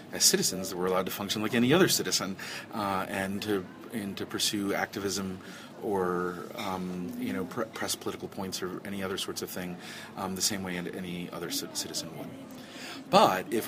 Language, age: English, 30-49